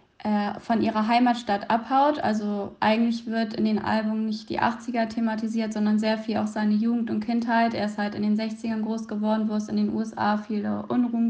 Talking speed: 195 wpm